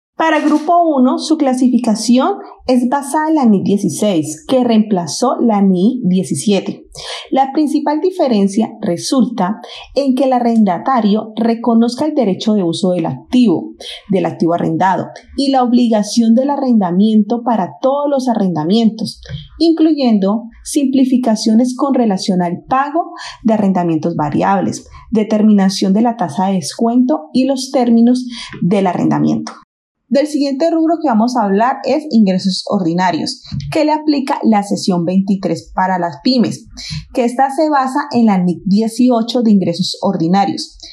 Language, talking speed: Spanish, 135 wpm